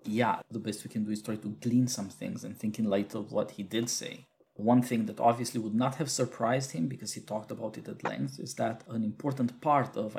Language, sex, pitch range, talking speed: English, male, 105-130 Hz, 255 wpm